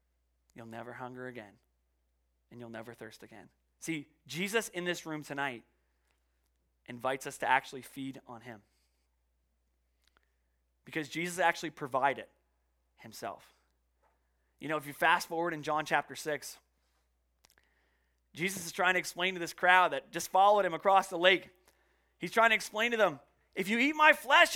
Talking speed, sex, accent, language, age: 155 wpm, male, American, English, 30-49